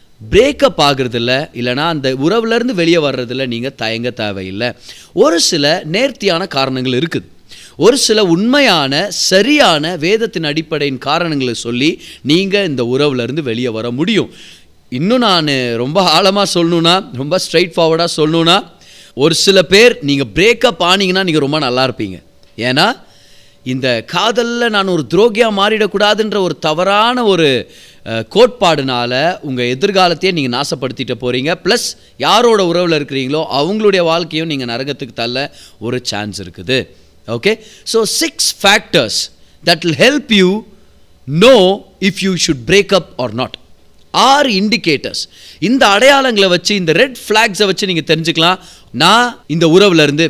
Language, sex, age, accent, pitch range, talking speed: Tamil, male, 30-49, native, 130-200 Hz, 130 wpm